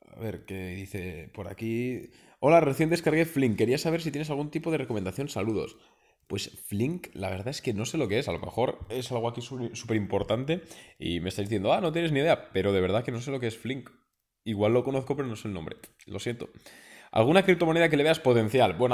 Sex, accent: male, Spanish